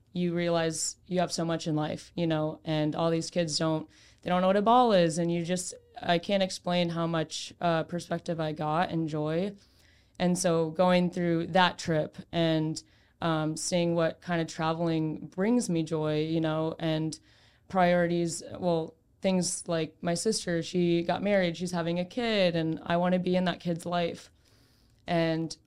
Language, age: English, 20-39